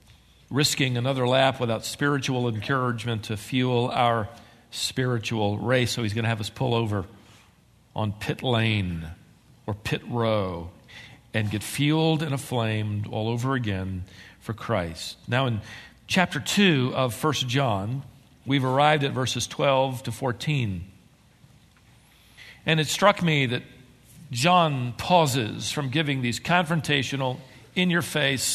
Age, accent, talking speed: 50-69, American, 130 wpm